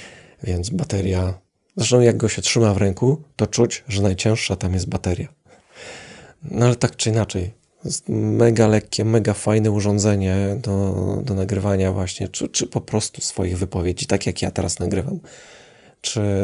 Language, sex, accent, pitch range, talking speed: Polish, male, native, 95-115 Hz, 155 wpm